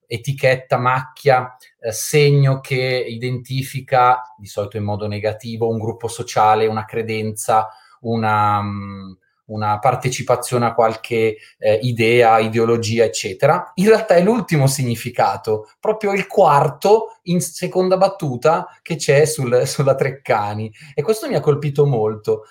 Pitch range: 110-150 Hz